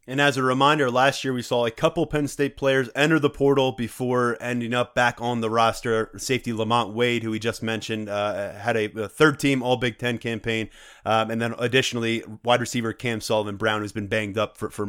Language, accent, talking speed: English, American, 215 wpm